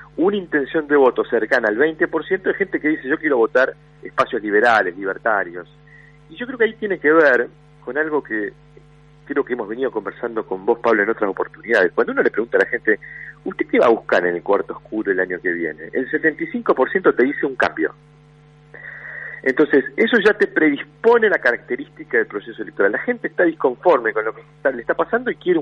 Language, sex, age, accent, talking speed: Spanish, male, 40-59, Argentinian, 205 wpm